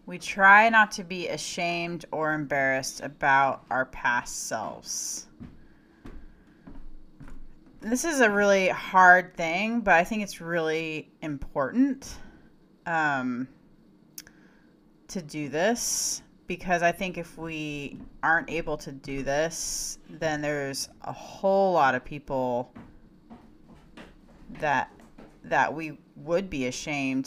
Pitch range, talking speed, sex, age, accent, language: 150-195 Hz, 110 wpm, female, 30-49, American, English